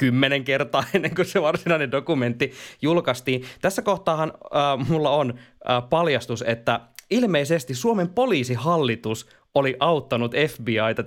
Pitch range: 120-155 Hz